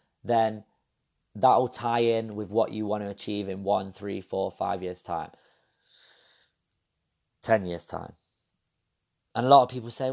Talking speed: 160 wpm